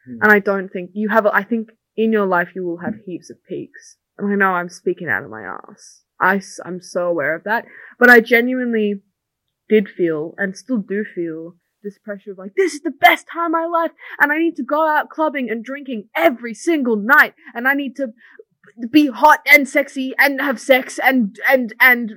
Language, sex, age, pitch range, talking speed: English, female, 20-39, 190-270 Hz, 215 wpm